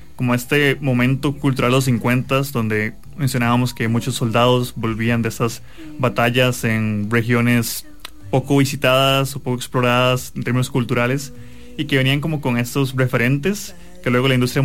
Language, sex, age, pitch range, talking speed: English, male, 20-39, 115-140 Hz, 150 wpm